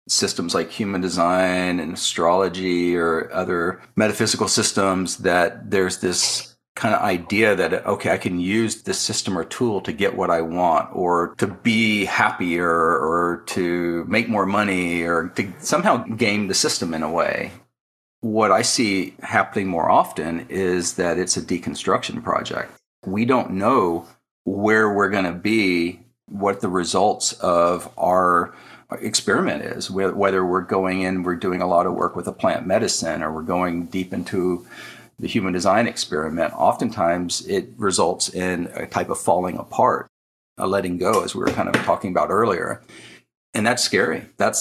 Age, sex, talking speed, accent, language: 40-59, male, 165 wpm, American, English